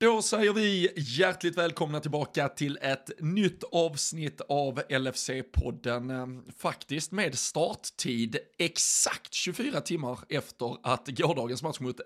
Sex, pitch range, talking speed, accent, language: male, 125-160 Hz, 115 wpm, native, Swedish